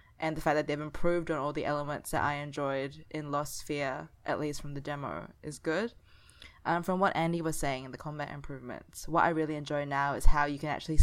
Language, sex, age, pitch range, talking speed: English, female, 20-39, 145-165 Hz, 235 wpm